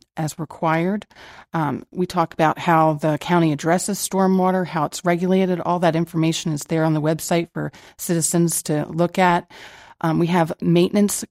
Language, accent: English, American